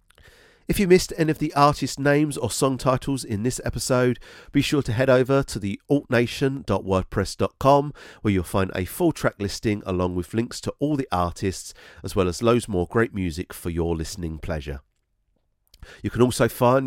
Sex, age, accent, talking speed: male, 40-59, British, 180 wpm